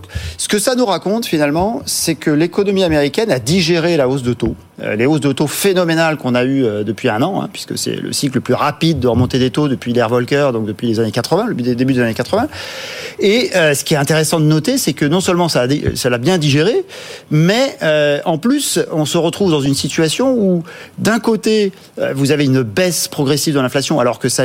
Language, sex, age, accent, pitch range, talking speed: French, male, 40-59, French, 135-185 Hz, 235 wpm